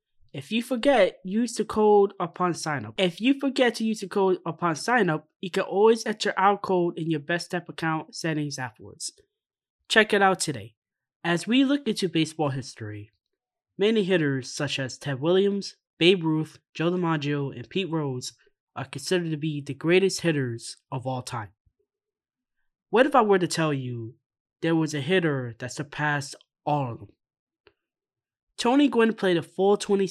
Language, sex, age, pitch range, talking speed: English, male, 20-39, 140-195 Hz, 170 wpm